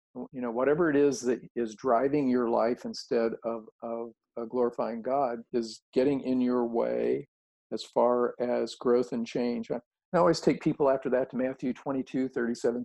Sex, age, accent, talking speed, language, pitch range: male, 50-69, American, 175 wpm, English, 120-140 Hz